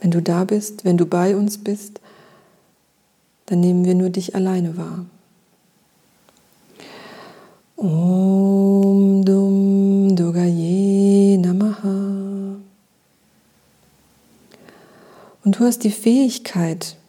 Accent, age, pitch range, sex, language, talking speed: German, 40-59, 180-205 Hz, female, German, 75 wpm